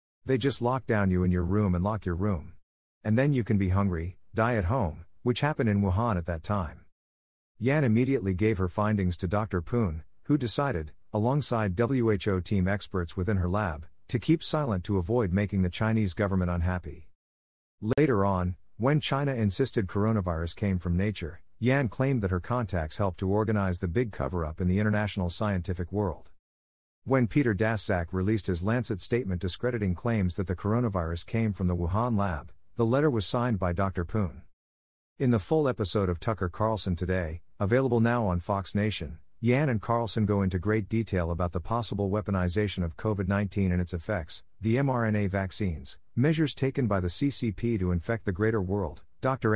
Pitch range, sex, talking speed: 90-115 Hz, male, 180 wpm